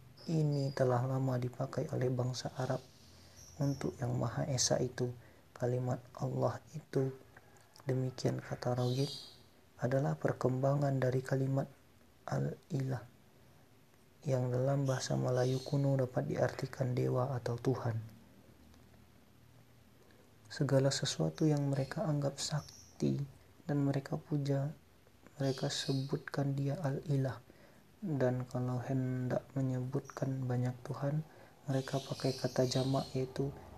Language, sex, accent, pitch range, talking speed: Indonesian, male, native, 125-140 Hz, 100 wpm